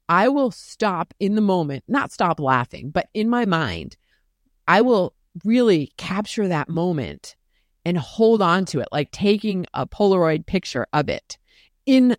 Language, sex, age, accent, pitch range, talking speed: English, female, 30-49, American, 155-200 Hz, 160 wpm